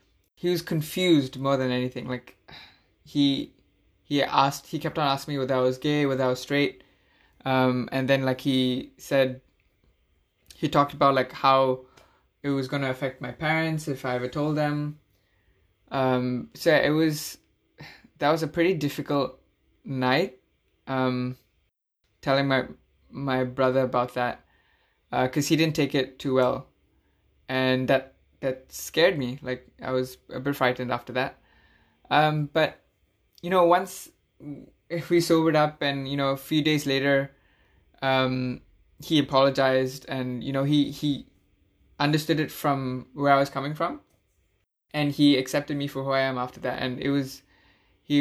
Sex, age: male, 20-39